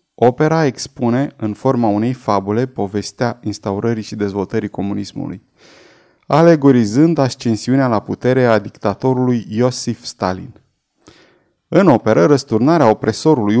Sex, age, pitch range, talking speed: male, 30-49, 110-145 Hz, 100 wpm